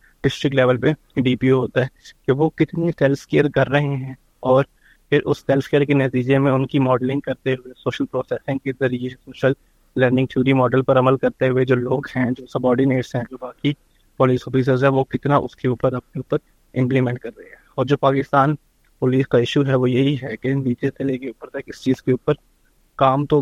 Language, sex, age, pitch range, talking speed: Urdu, male, 20-39, 125-135 Hz, 190 wpm